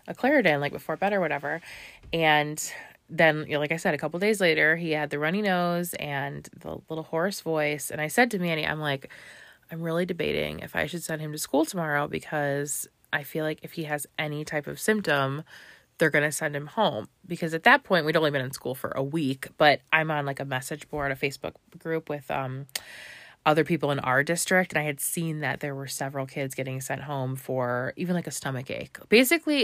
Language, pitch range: English, 145-170 Hz